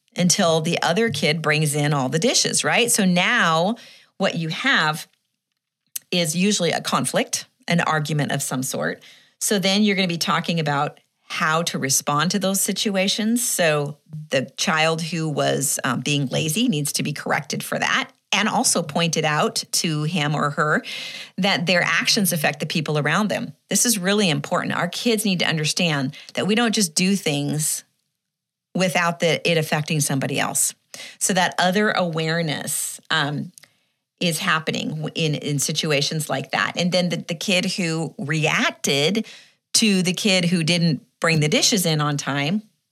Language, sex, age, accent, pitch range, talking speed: English, female, 40-59, American, 150-195 Hz, 165 wpm